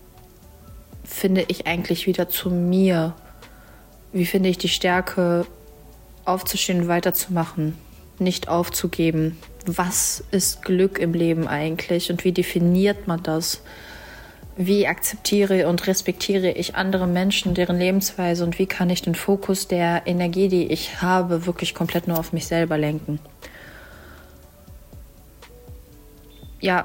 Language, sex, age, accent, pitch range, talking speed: German, female, 30-49, German, 175-190 Hz, 125 wpm